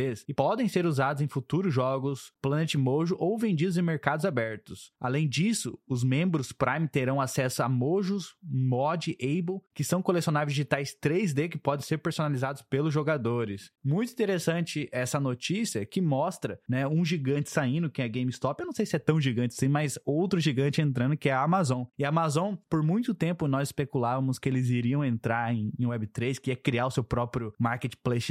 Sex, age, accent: male, 20-39, Brazilian